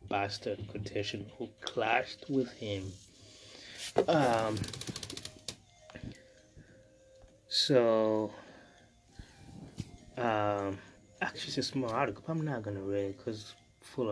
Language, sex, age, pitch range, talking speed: English, male, 20-39, 100-130 Hz, 100 wpm